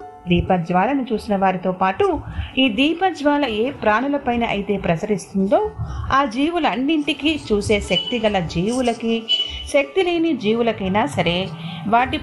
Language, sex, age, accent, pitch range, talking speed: Telugu, female, 30-49, native, 185-275 Hz, 105 wpm